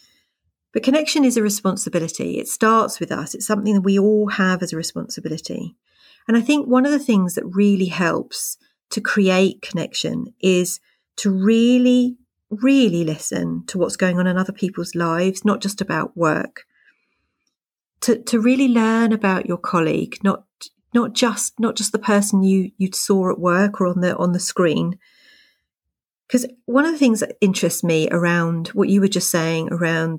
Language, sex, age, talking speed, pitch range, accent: English, female, 40-59, 175 wpm, 180-235 Hz, British